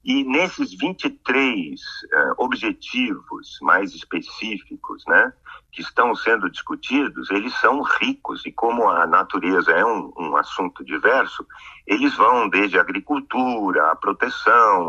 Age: 50-69